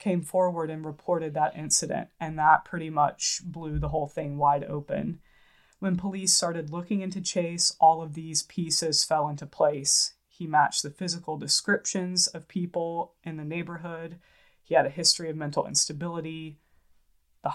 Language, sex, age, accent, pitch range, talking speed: English, female, 20-39, American, 150-180 Hz, 160 wpm